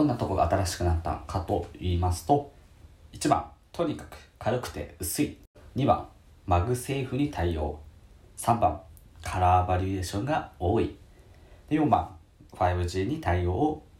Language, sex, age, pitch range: Japanese, male, 40-59, 85-120 Hz